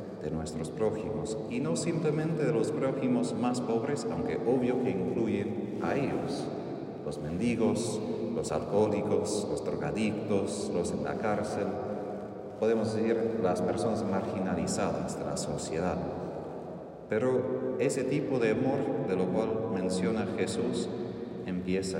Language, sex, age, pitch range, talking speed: Spanish, male, 40-59, 90-115 Hz, 125 wpm